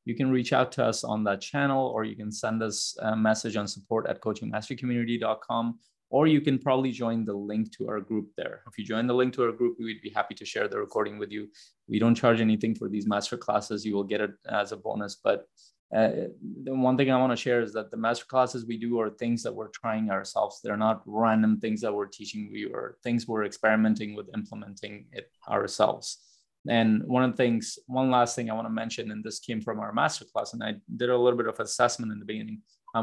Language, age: English, 20-39